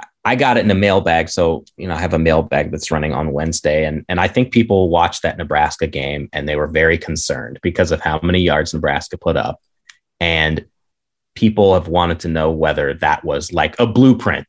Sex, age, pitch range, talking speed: male, 30-49, 85-120 Hz, 210 wpm